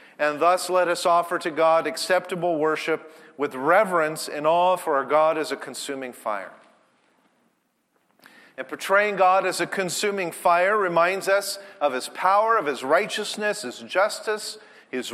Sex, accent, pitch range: male, American, 150-205 Hz